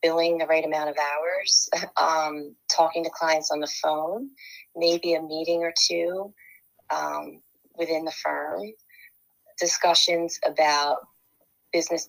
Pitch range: 150-170 Hz